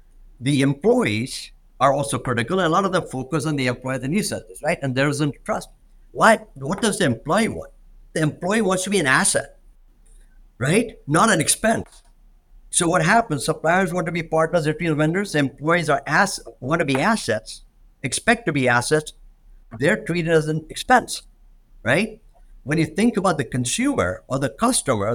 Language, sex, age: English, male, 50-69